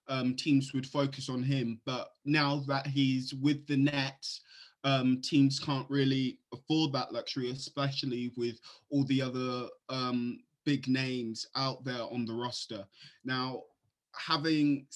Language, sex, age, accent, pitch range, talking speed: English, male, 20-39, British, 125-145 Hz, 140 wpm